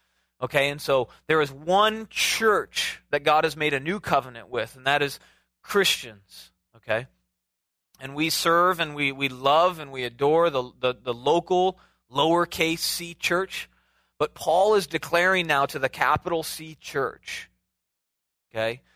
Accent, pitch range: American, 130-165 Hz